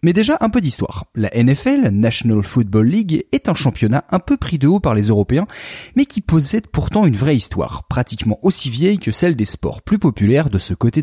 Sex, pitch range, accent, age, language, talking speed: male, 105-170 Hz, French, 30-49, French, 220 wpm